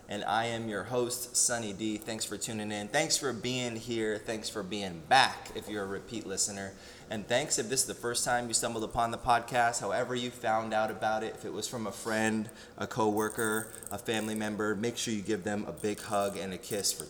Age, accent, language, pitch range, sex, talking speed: 20-39, American, English, 100-120 Hz, male, 230 wpm